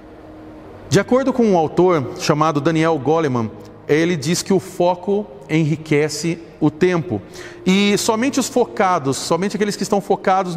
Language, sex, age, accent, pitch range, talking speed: Portuguese, male, 40-59, Brazilian, 155-190 Hz, 140 wpm